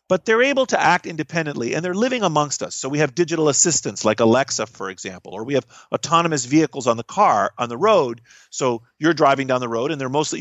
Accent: American